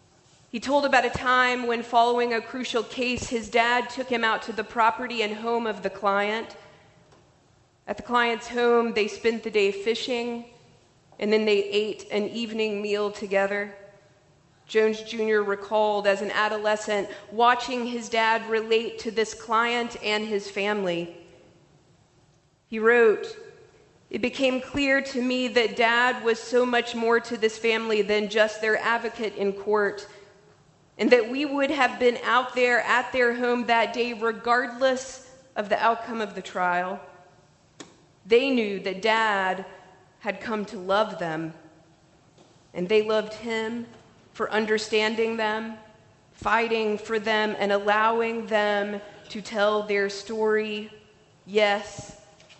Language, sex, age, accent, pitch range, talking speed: English, female, 40-59, American, 200-235 Hz, 145 wpm